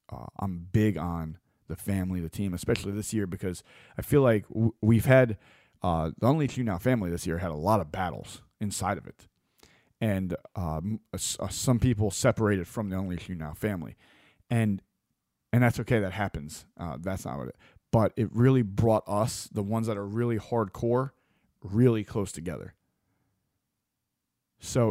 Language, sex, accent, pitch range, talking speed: English, male, American, 95-120 Hz, 170 wpm